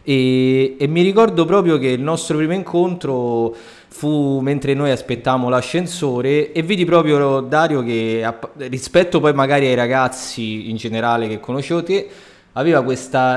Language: Italian